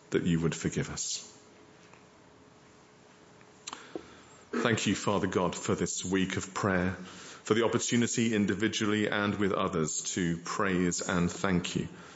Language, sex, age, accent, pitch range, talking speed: English, male, 40-59, British, 85-105 Hz, 130 wpm